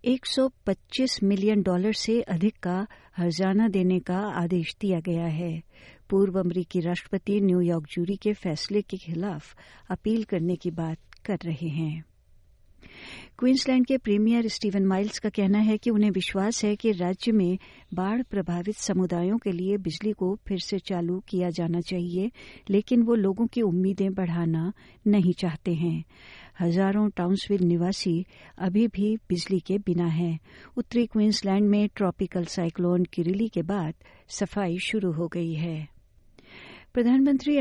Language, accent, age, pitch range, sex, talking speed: Hindi, native, 60-79, 180-215 Hz, female, 140 wpm